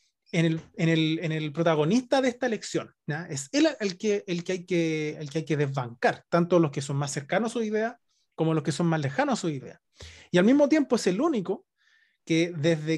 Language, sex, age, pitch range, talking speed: Spanish, male, 30-49, 160-210 Hz, 235 wpm